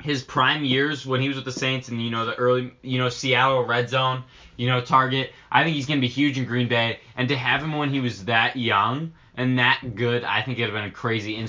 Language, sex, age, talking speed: English, male, 20-39, 265 wpm